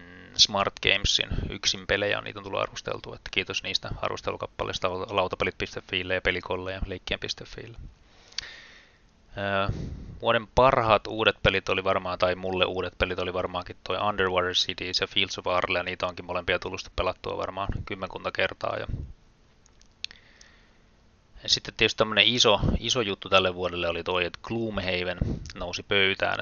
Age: 20-39